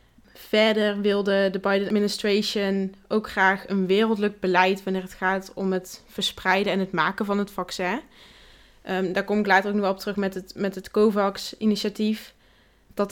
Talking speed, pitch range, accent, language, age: 170 wpm, 185-210 Hz, Dutch, Dutch, 20-39